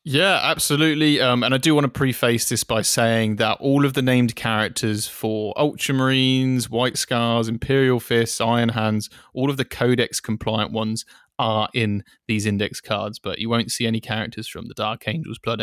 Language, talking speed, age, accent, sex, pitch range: English, 185 wpm, 20-39, British, male, 110-135 Hz